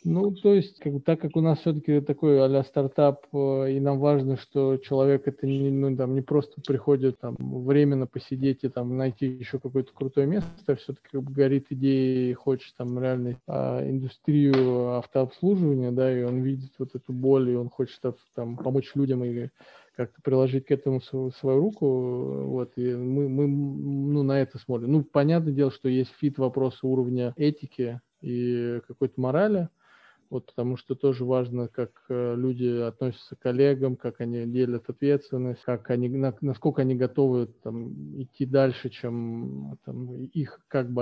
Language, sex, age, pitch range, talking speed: Russian, male, 20-39, 125-140 Hz, 170 wpm